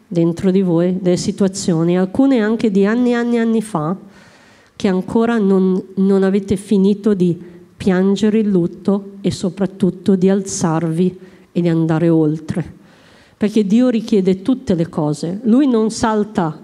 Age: 40-59